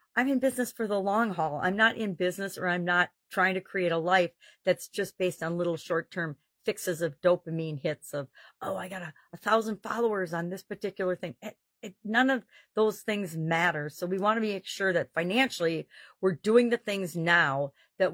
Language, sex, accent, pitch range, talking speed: English, female, American, 165-215 Hz, 195 wpm